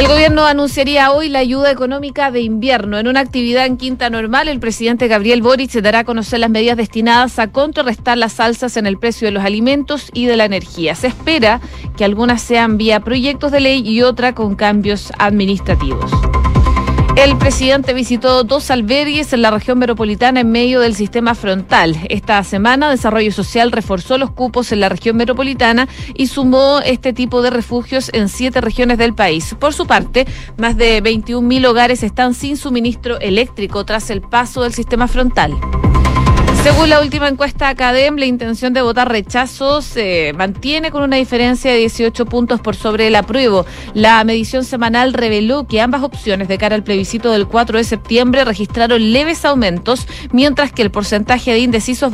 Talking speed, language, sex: 175 wpm, Spanish, female